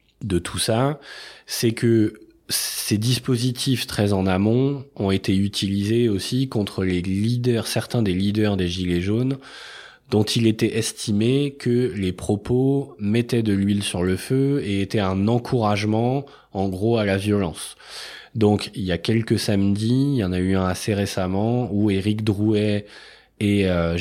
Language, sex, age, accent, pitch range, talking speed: French, male, 20-39, French, 95-115 Hz, 160 wpm